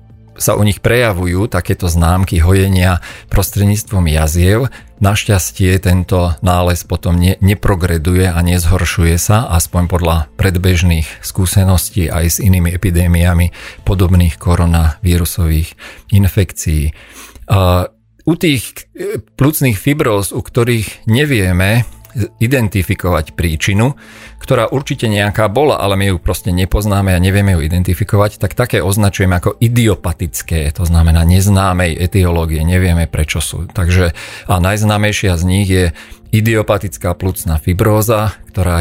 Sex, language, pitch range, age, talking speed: male, Slovak, 85-105 Hz, 40-59, 110 wpm